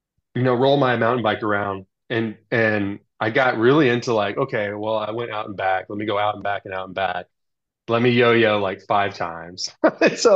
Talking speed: 220 wpm